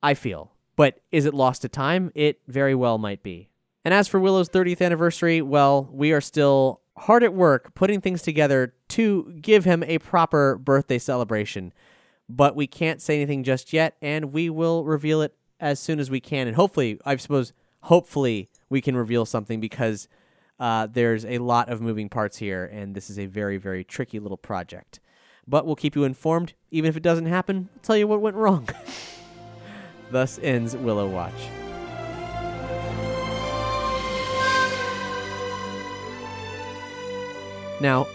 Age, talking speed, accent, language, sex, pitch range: 20-39, 160 wpm, American, English, male, 115-165 Hz